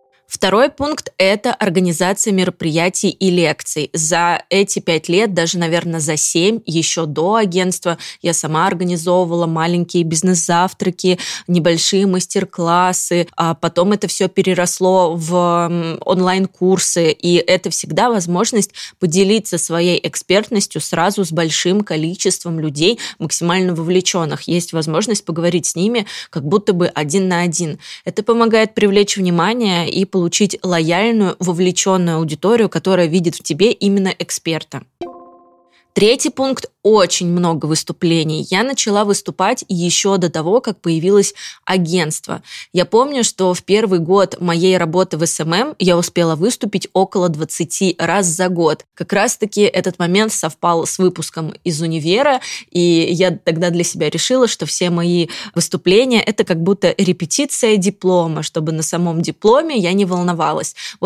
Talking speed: 135 wpm